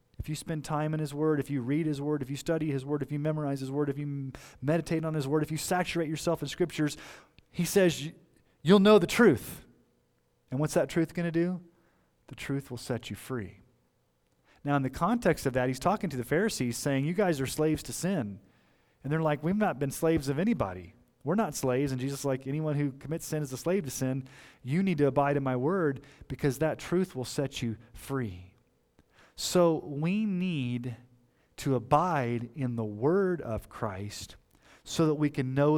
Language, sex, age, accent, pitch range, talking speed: English, male, 30-49, American, 120-155 Hz, 210 wpm